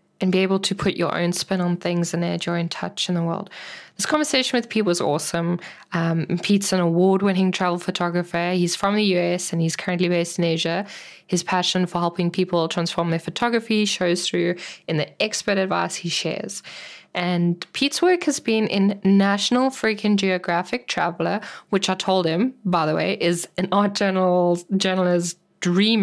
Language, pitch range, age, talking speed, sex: English, 175-205 Hz, 10-29, 180 wpm, female